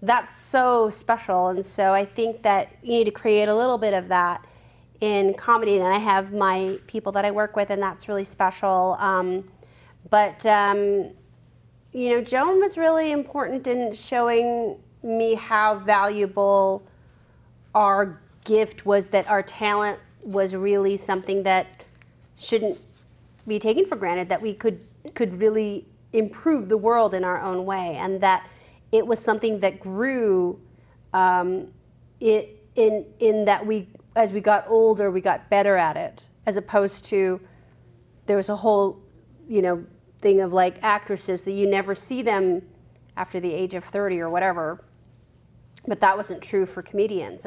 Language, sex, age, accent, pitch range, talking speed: English, female, 30-49, American, 185-220 Hz, 160 wpm